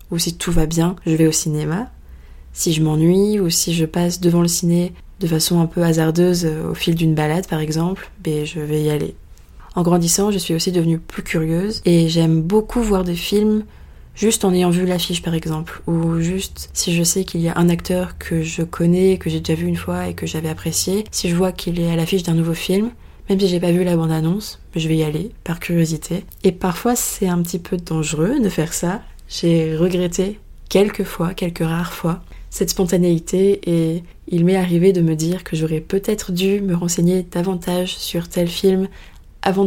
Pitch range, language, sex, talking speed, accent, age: 165-190 Hz, French, female, 210 wpm, French, 20-39